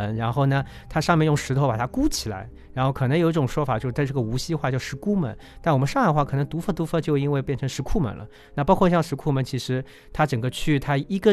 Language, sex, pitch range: Chinese, male, 120-155 Hz